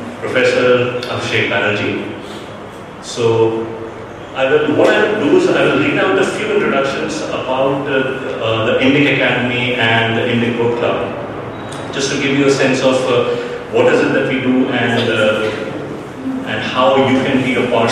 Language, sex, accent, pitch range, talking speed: English, male, Indian, 115-140 Hz, 170 wpm